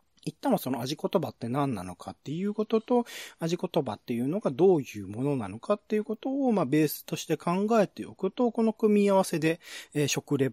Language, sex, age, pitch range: Japanese, male, 40-59, 125-195 Hz